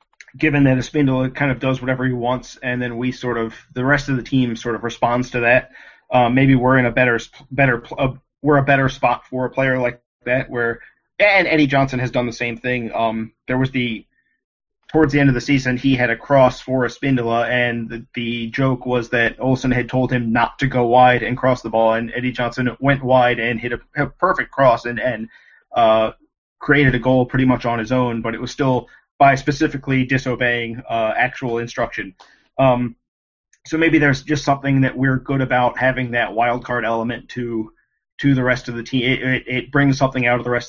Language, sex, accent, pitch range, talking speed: English, male, American, 120-130 Hz, 220 wpm